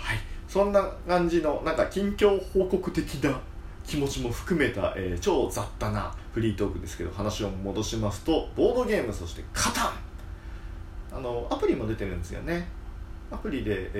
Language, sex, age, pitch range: Japanese, male, 40-59, 90-135 Hz